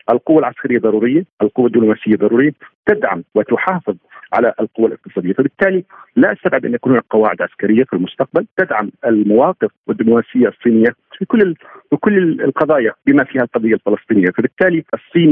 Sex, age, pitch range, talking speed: male, 50-69, 110-145 Hz, 135 wpm